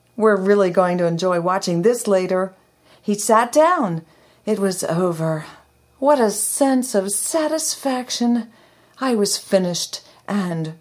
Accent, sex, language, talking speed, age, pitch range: American, female, English, 130 wpm, 40-59, 190-255 Hz